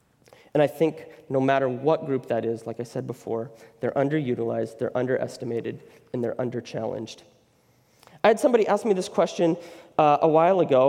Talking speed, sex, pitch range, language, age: 170 wpm, male, 140-230 Hz, English, 30-49